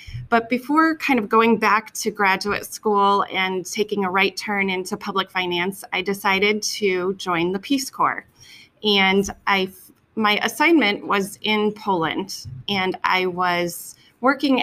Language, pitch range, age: English, 185-225 Hz, 30-49